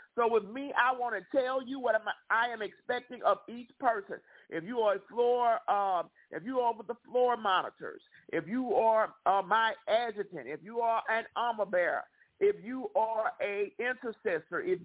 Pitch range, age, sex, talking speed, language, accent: 220-275 Hz, 50-69, male, 185 wpm, English, American